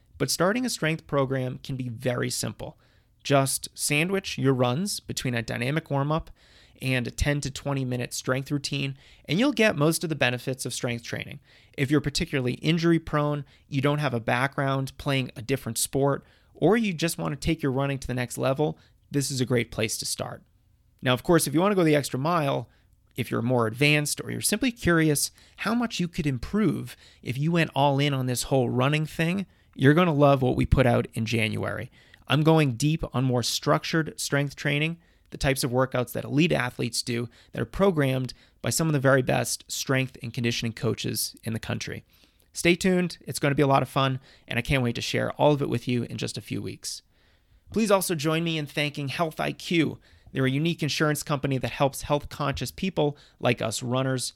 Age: 30-49